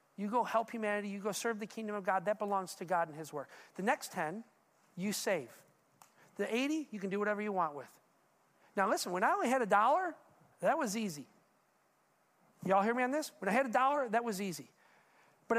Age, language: 40-59, English